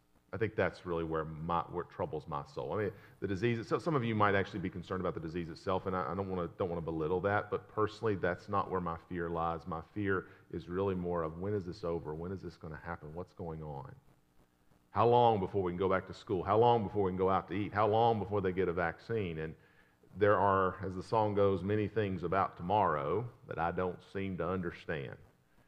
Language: English